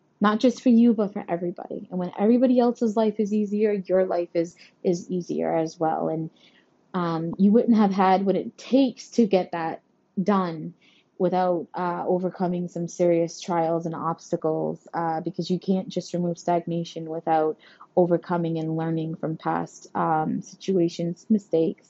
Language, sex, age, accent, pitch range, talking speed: English, female, 20-39, American, 170-215 Hz, 160 wpm